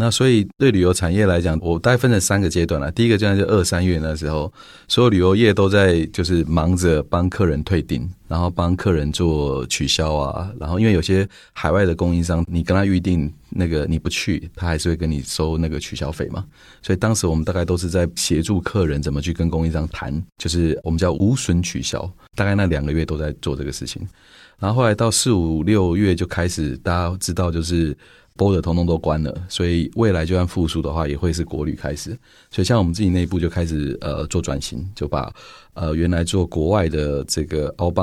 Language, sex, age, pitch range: Chinese, male, 30-49, 75-95 Hz